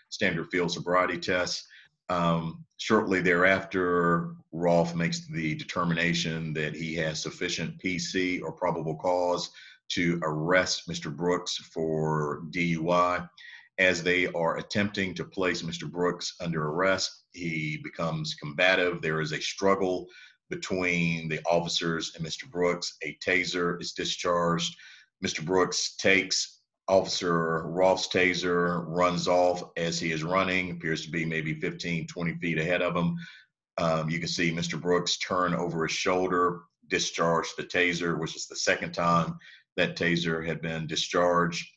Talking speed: 140 wpm